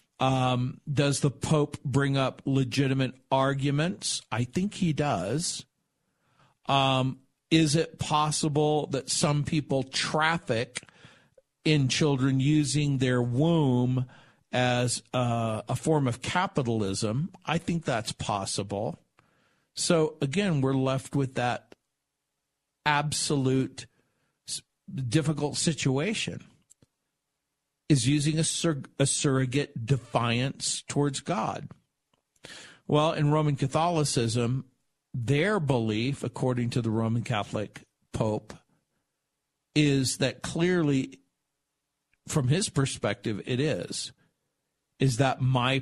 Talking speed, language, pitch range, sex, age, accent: 100 wpm, English, 125-150 Hz, male, 50-69, American